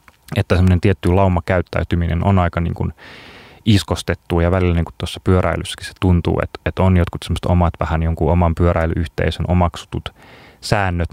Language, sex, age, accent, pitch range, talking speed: Finnish, male, 30-49, native, 85-100 Hz, 155 wpm